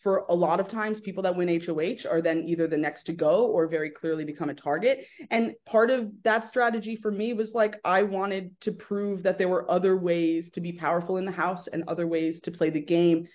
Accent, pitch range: American, 160-190 Hz